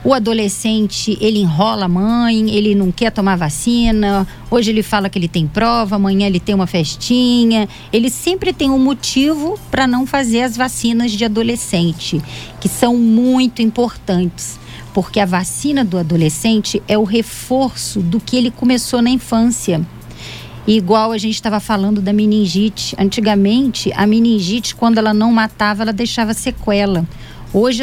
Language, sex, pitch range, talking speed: Portuguese, female, 195-240 Hz, 155 wpm